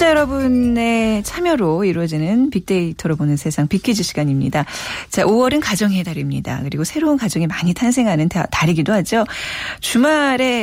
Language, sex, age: Korean, female, 40-59